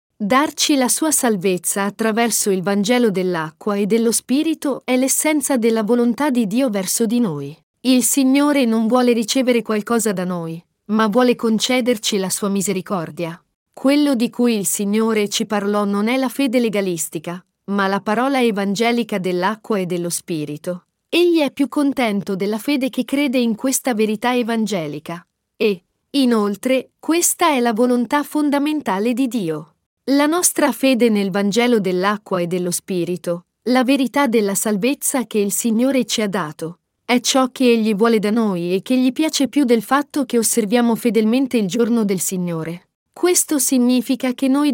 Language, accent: Italian, native